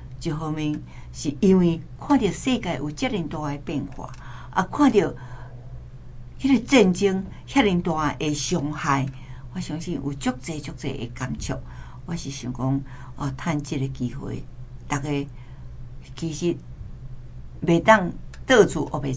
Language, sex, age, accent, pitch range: Chinese, female, 60-79, American, 130-185 Hz